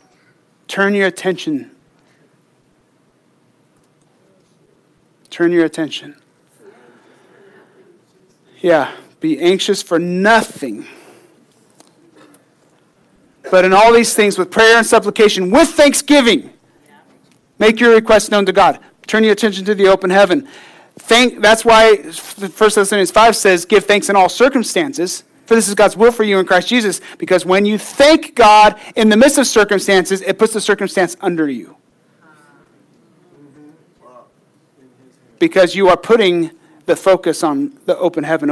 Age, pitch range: 30-49, 180-230 Hz